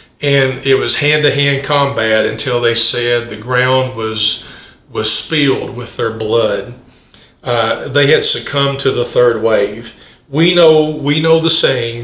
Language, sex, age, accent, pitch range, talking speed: English, male, 50-69, American, 130-155 Hz, 160 wpm